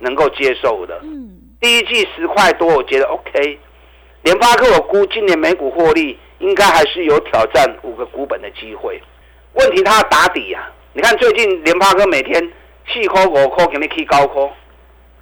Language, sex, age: Chinese, male, 50-69